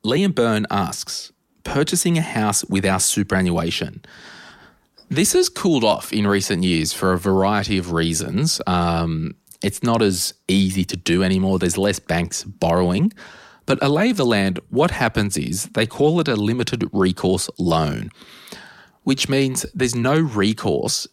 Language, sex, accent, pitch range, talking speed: English, male, Australian, 90-115 Hz, 145 wpm